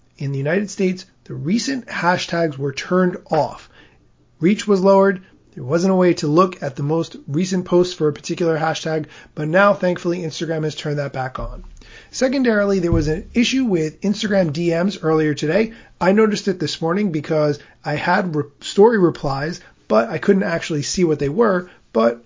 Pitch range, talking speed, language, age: 150-190 Hz, 180 wpm, English, 30-49